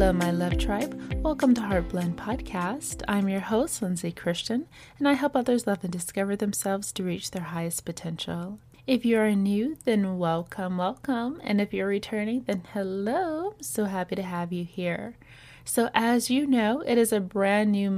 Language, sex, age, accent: English, female, 20-39, American